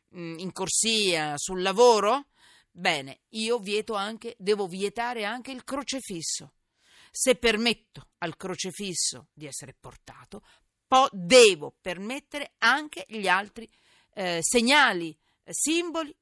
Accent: native